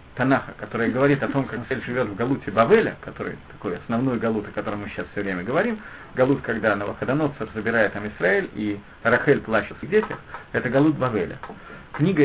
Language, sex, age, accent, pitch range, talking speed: Russian, male, 50-69, native, 115-155 Hz, 180 wpm